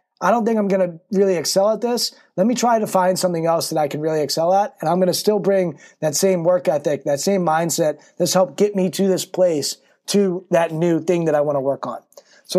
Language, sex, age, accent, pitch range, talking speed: English, male, 20-39, American, 165-200 Hz, 255 wpm